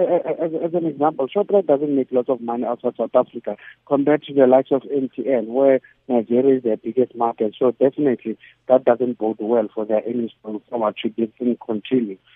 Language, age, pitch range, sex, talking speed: English, 60-79, 110-130 Hz, male, 190 wpm